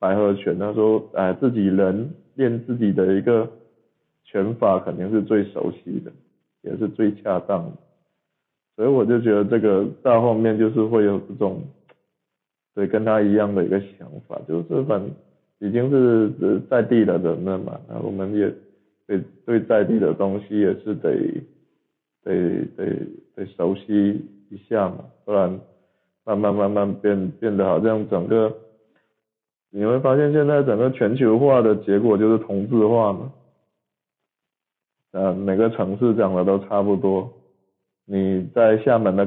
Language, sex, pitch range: Chinese, male, 95-110 Hz